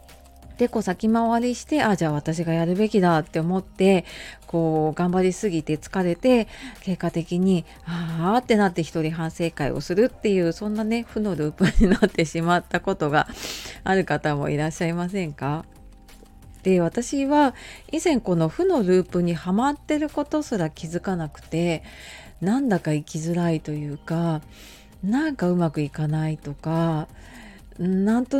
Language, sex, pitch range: Japanese, female, 160-220 Hz